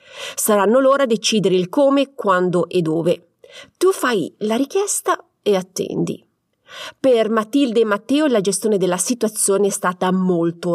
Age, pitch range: 30-49, 180-275 Hz